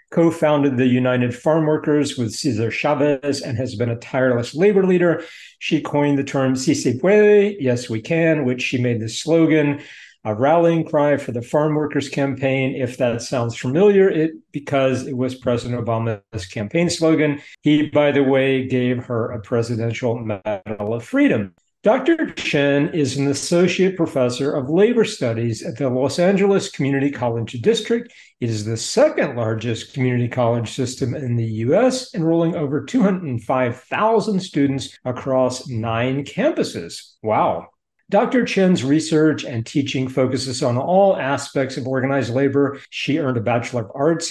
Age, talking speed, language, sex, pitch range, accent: 50-69, 155 wpm, English, male, 120-160 Hz, American